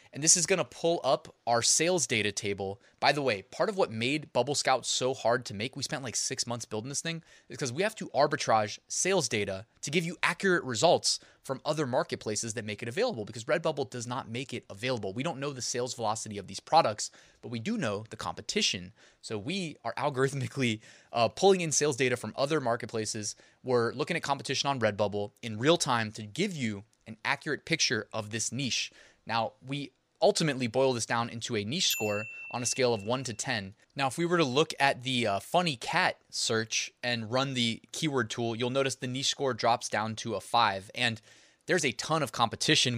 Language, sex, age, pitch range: English, male, 20-39, 115-140 Hz